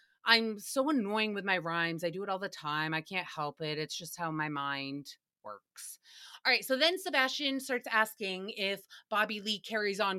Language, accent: English, American